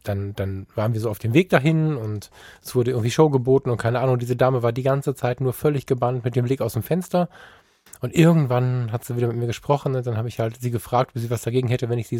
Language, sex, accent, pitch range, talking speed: German, male, German, 120-150 Hz, 275 wpm